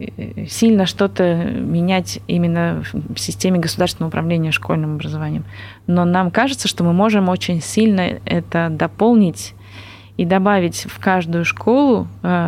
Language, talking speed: Russian, 120 wpm